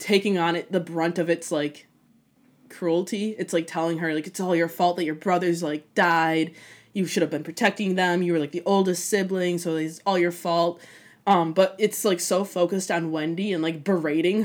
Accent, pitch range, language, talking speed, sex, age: American, 165-200 Hz, English, 210 wpm, female, 20-39